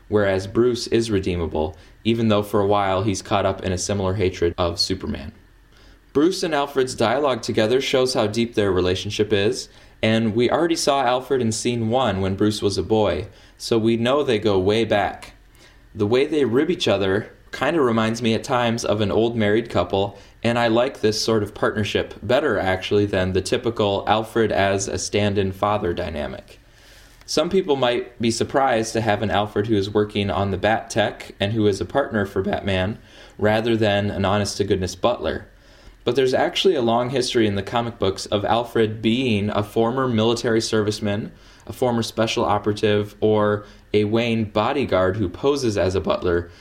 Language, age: English, 20-39